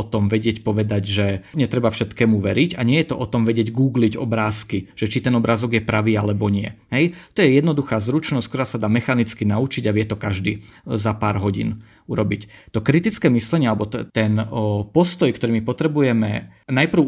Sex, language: male, Slovak